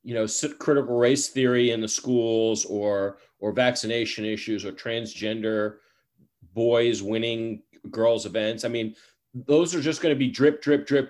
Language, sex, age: English, male, 40-59